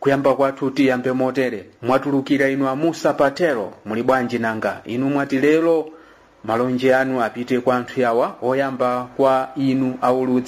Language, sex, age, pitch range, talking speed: English, male, 40-59, 125-150 Hz, 135 wpm